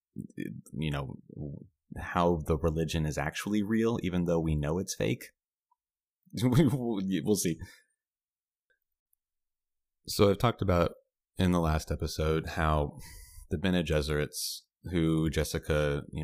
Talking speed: 115 wpm